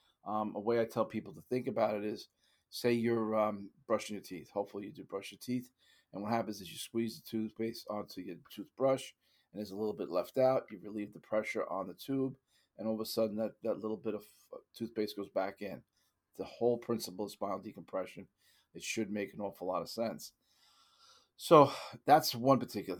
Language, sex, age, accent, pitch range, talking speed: English, male, 40-59, American, 105-120 Hz, 210 wpm